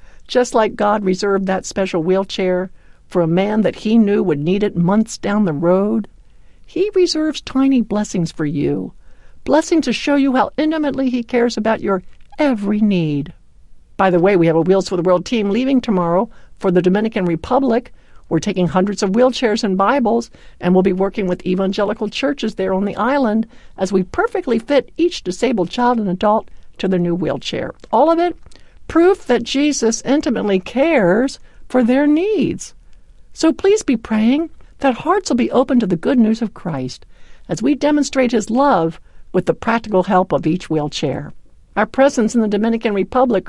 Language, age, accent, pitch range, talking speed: English, 60-79, American, 185-260 Hz, 180 wpm